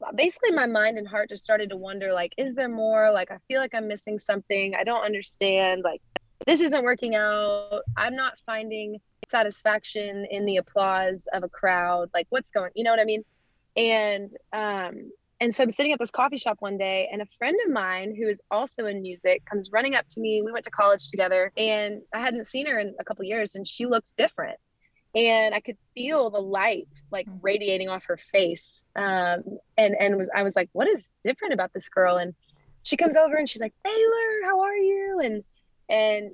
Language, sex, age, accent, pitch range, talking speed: English, female, 20-39, American, 195-240 Hz, 215 wpm